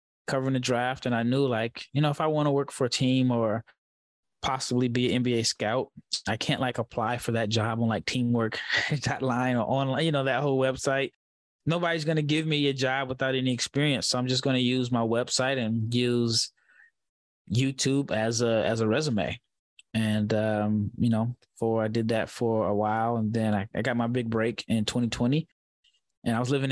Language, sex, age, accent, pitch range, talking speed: English, male, 20-39, American, 115-135 Hz, 205 wpm